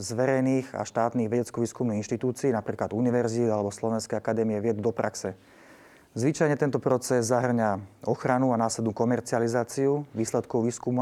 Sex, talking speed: male, 125 wpm